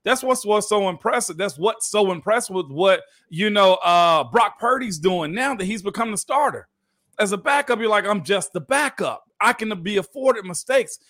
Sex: male